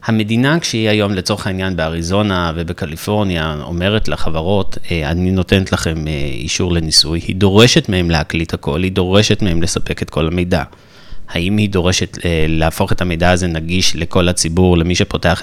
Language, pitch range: Hebrew, 90-110 Hz